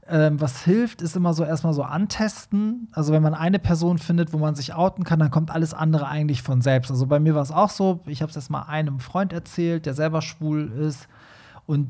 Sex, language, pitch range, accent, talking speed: male, German, 145-170 Hz, German, 230 wpm